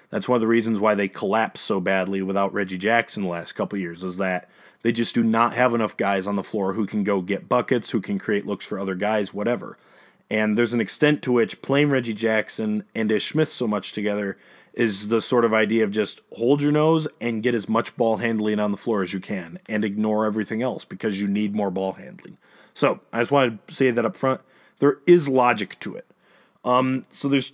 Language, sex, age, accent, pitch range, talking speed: English, male, 30-49, American, 105-135 Hz, 230 wpm